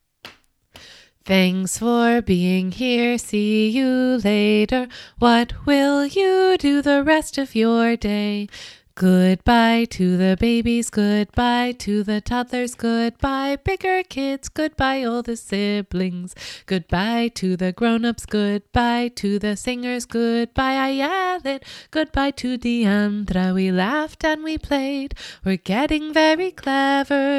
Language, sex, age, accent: English, female, 20-39, American